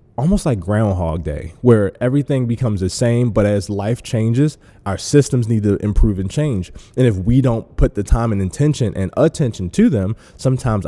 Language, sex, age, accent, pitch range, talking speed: English, male, 20-39, American, 100-120 Hz, 190 wpm